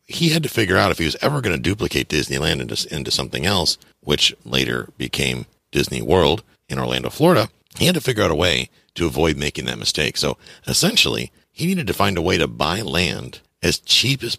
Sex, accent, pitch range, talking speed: male, American, 70-105 Hz, 215 wpm